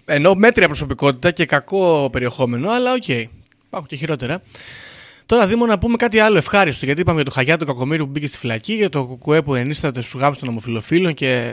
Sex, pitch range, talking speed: male, 125-170 Hz, 210 wpm